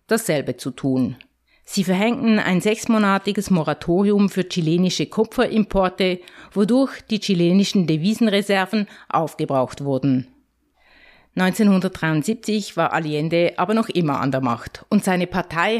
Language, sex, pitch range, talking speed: German, female, 160-205 Hz, 110 wpm